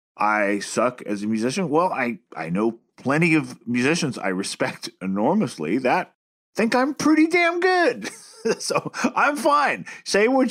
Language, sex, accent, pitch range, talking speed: English, male, American, 110-150 Hz, 150 wpm